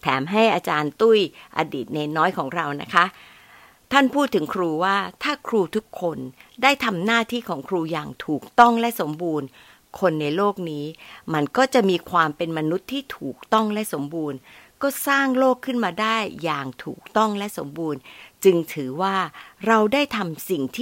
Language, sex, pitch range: Thai, female, 160-225 Hz